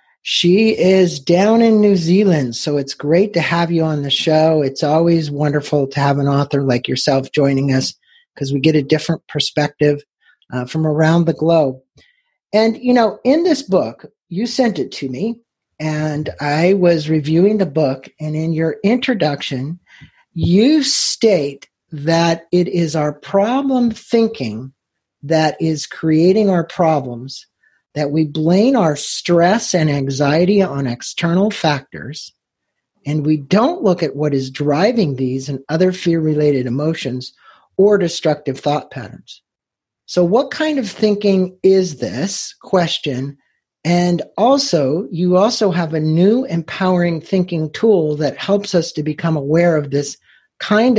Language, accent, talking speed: English, American, 145 wpm